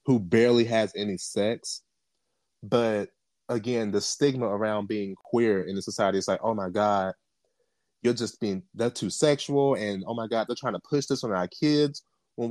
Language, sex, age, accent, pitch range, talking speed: English, male, 30-49, American, 120-160 Hz, 185 wpm